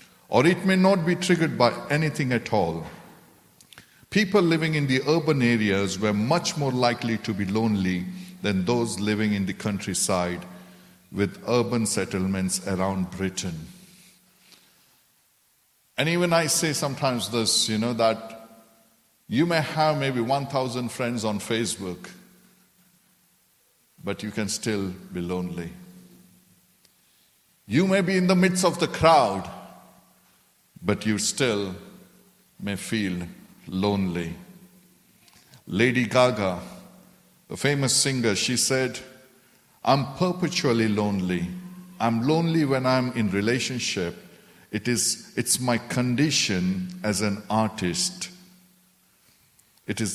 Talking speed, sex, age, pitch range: 115 wpm, male, 60-79, 100-155 Hz